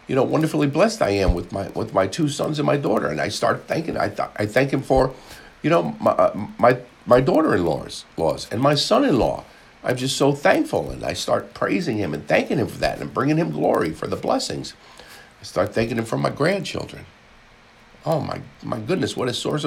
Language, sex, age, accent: English, male, 60-79, American